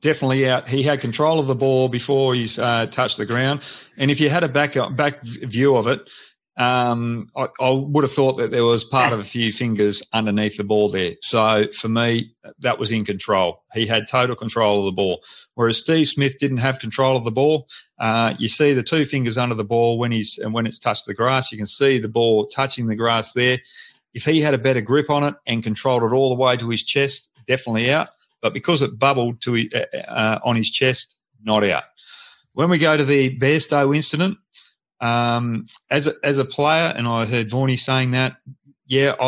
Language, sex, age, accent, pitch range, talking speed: English, male, 40-59, Australian, 110-135 Hz, 215 wpm